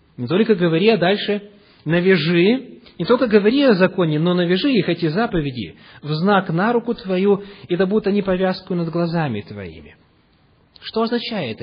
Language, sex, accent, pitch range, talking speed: Russian, male, native, 140-205 Hz, 160 wpm